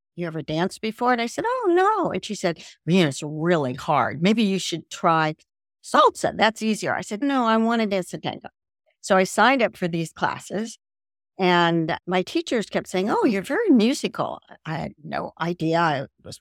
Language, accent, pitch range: English, American, 160-210 Hz